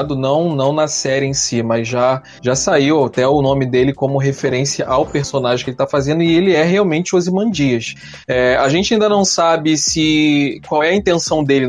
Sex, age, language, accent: male, 20-39, Portuguese, Brazilian